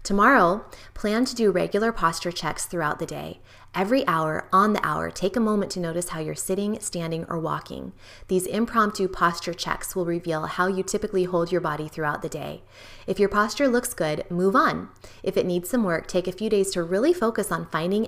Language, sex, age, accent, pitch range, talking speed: English, female, 20-39, American, 165-215 Hz, 205 wpm